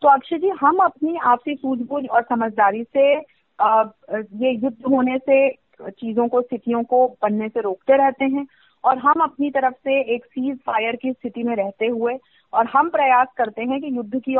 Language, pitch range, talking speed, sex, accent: Hindi, 230-285 Hz, 185 wpm, female, native